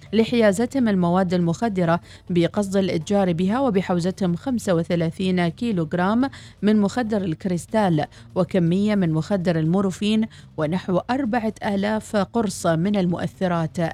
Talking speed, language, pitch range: 95 wpm, Arabic, 170-220 Hz